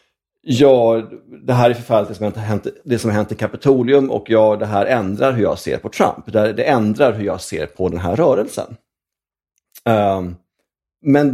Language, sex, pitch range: English, male, 95-130 Hz